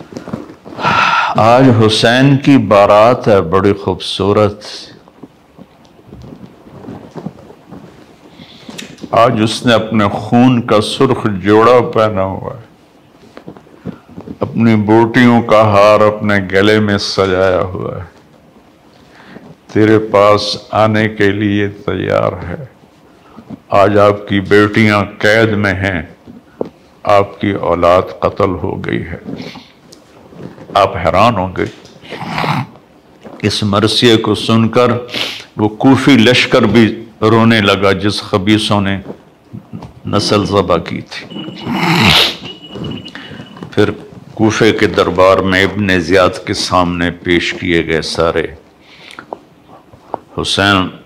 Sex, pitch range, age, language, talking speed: male, 95-110 Hz, 60-79, Urdu, 100 wpm